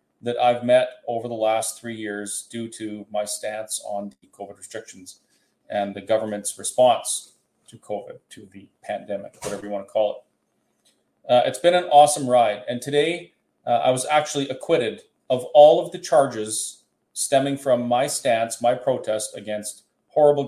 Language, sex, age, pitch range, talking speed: English, male, 30-49, 115-145 Hz, 165 wpm